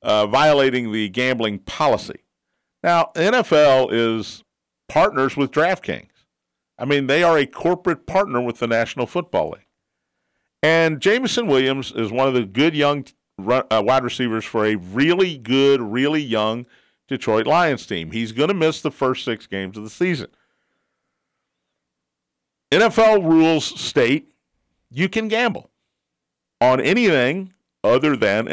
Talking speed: 135 wpm